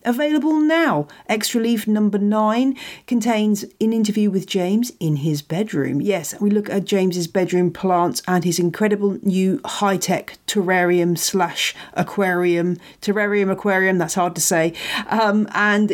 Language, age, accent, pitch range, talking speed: English, 40-59, British, 170-230 Hz, 140 wpm